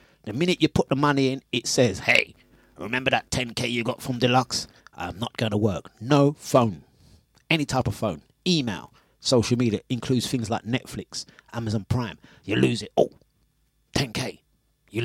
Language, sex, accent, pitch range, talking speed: English, male, British, 125-160 Hz, 170 wpm